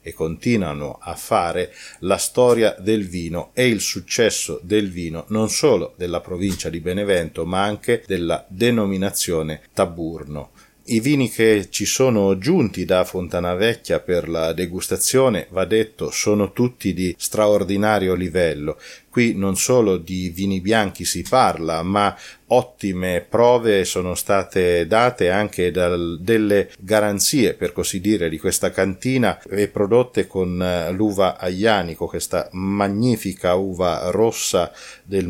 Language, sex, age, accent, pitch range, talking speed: Italian, male, 40-59, native, 90-110 Hz, 130 wpm